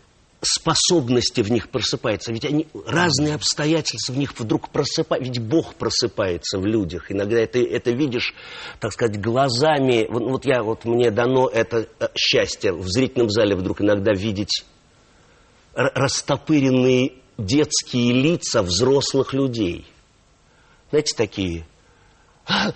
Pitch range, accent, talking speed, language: 115-150 Hz, native, 120 wpm, Russian